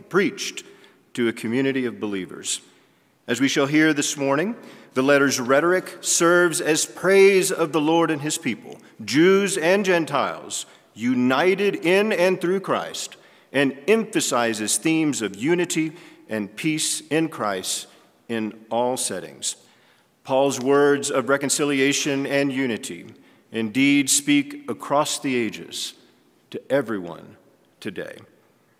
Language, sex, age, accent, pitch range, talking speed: English, male, 50-69, American, 120-160 Hz, 120 wpm